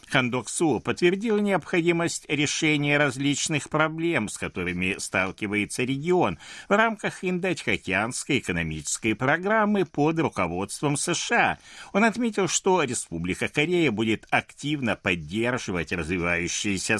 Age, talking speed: 60-79, 100 wpm